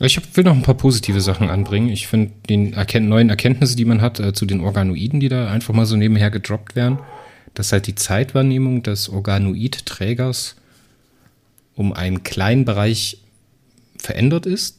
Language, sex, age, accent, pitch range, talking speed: German, male, 30-49, German, 100-125 Hz, 165 wpm